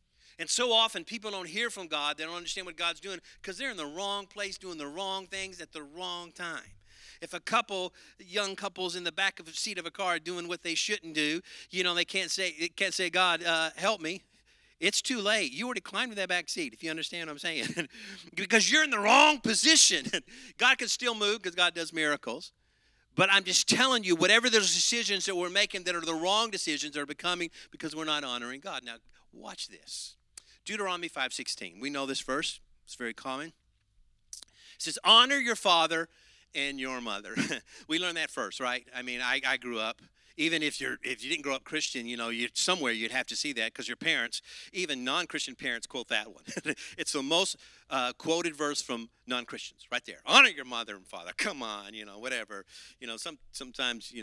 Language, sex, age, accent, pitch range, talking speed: English, male, 50-69, American, 140-200 Hz, 215 wpm